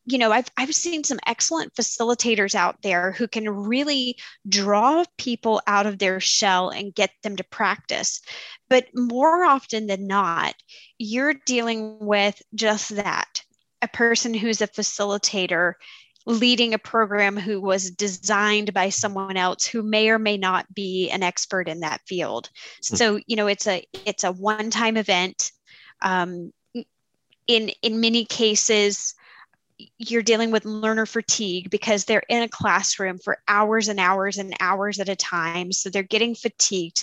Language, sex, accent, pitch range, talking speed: English, female, American, 195-230 Hz, 155 wpm